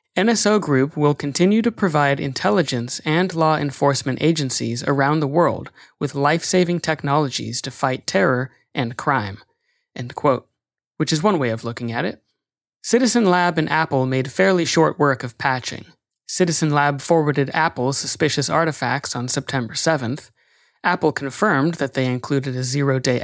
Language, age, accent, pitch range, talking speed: English, 30-49, American, 130-160 Hz, 150 wpm